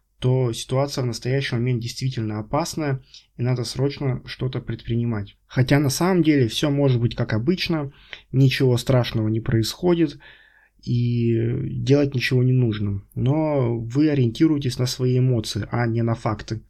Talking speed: 145 wpm